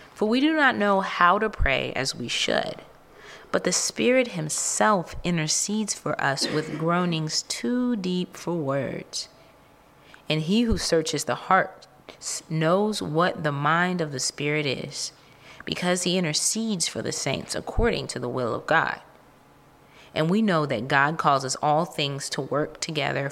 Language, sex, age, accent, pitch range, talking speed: English, female, 30-49, American, 155-220 Hz, 155 wpm